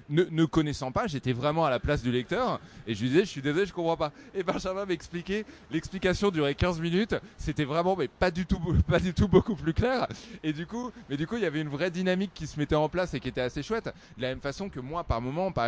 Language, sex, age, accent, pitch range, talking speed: French, male, 20-39, French, 115-160 Hz, 270 wpm